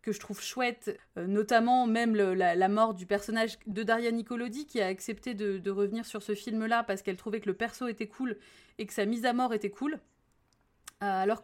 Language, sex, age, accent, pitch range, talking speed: French, female, 20-39, French, 205-255 Hz, 230 wpm